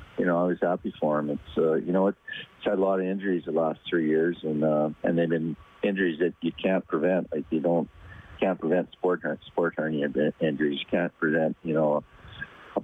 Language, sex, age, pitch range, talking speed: English, male, 50-69, 75-90 Hz, 215 wpm